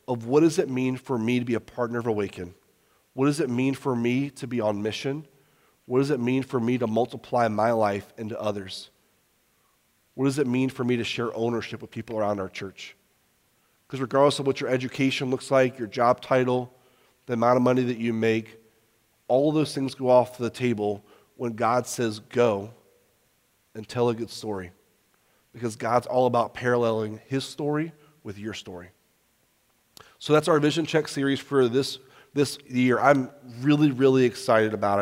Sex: male